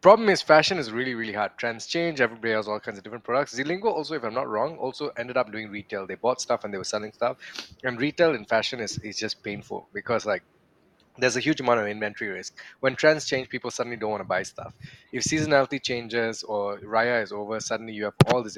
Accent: Indian